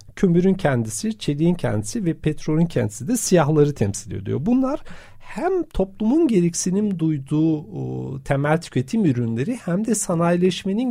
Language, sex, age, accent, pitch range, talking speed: Turkish, male, 50-69, native, 140-195 Hz, 125 wpm